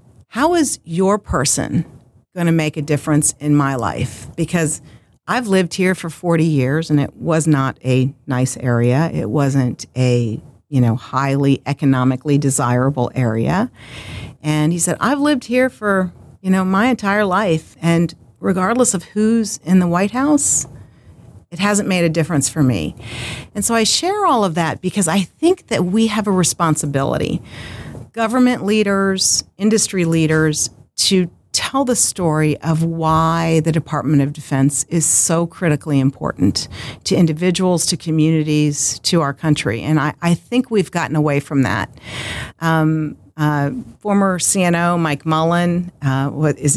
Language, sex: English, female